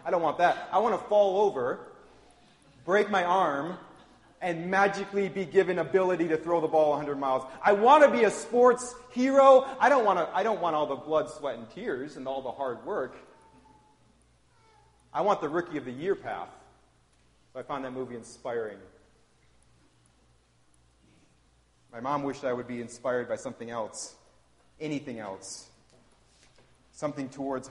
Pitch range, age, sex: 115-175 Hz, 30-49, male